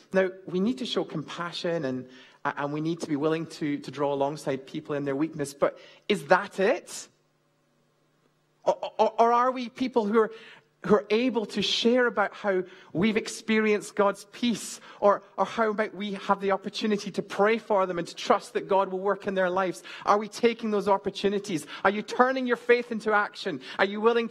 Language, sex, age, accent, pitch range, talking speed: English, male, 30-49, British, 180-235 Hz, 195 wpm